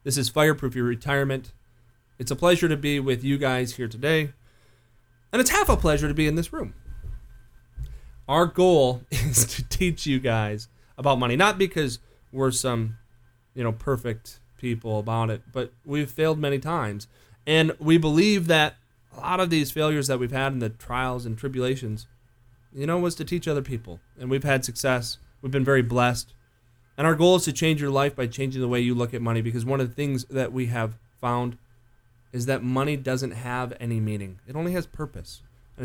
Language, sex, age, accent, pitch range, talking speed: English, male, 30-49, American, 120-155 Hz, 200 wpm